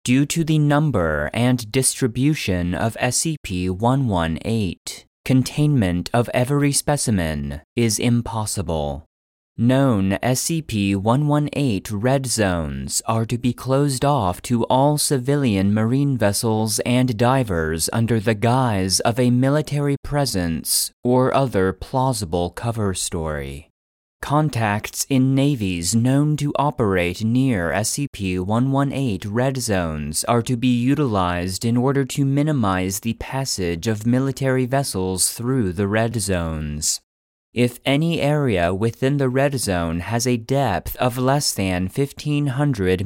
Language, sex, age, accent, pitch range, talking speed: English, male, 30-49, American, 95-135 Hz, 115 wpm